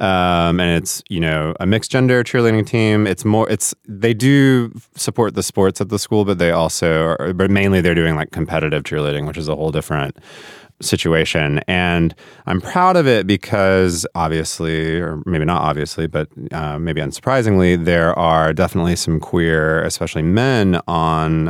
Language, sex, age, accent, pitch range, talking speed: English, male, 30-49, American, 80-100 Hz, 170 wpm